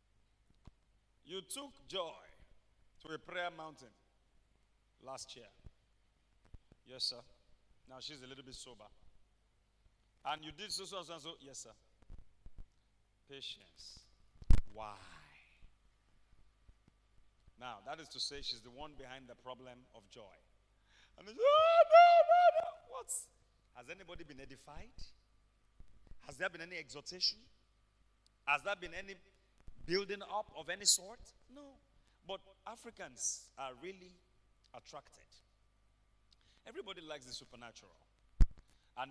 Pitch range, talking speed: 100-160 Hz, 120 wpm